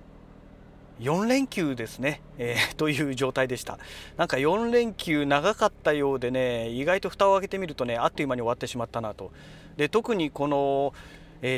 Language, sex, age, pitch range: Japanese, male, 40-59, 125-180 Hz